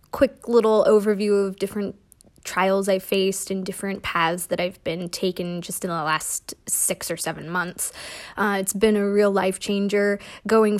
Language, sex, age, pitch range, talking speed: English, female, 20-39, 190-215 Hz, 170 wpm